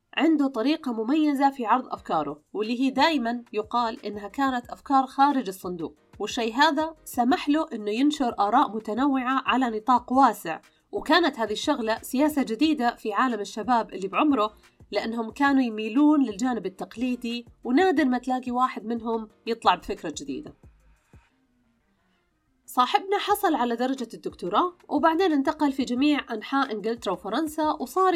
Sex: female